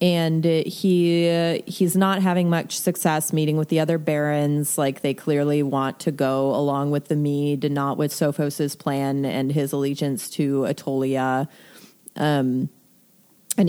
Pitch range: 145-180 Hz